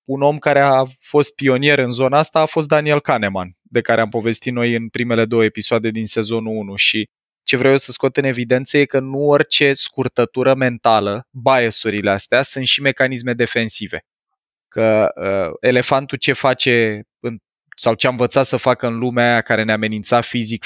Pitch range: 115-135 Hz